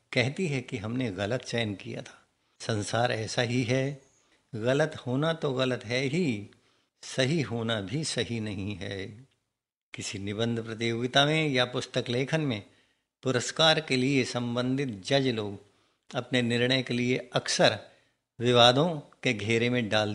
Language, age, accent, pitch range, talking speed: Hindi, 50-69, native, 115-135 Hz, 145 wpm